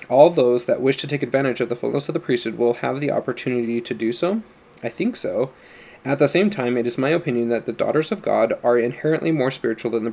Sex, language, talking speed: male, English, 250 wpm